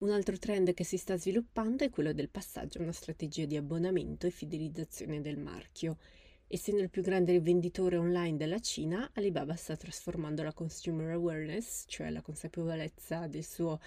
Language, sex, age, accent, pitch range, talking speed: Italian, female, 20-39, native, 155-190 Hz, 170 wpm